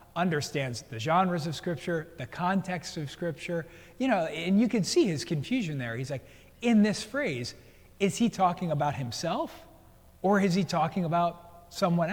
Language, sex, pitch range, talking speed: English, male, 150-200 Hz, 170 wpm